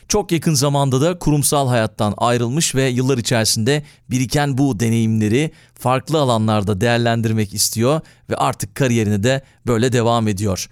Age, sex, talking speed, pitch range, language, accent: 40-59, male, 135 wpm, 115-150 Hz, Turkish, native